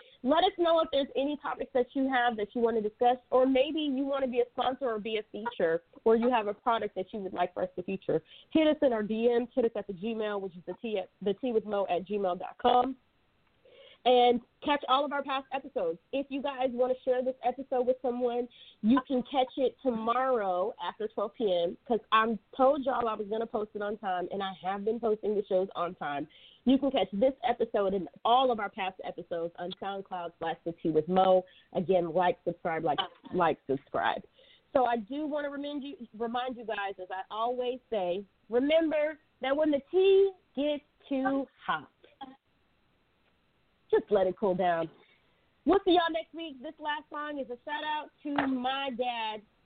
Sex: female